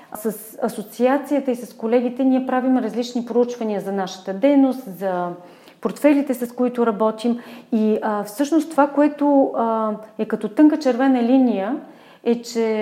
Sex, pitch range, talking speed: female, 210-260 Hz, 140 wpm